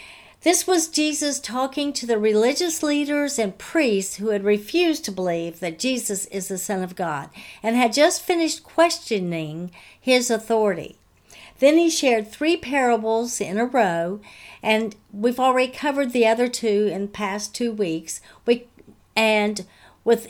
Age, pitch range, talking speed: 60-79, 190-270 Hz, 150 wpm